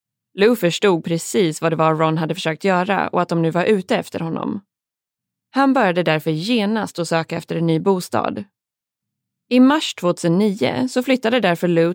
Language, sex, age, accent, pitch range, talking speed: Swedish, female, 20-39, native, 165-225 Hz, 175 wpm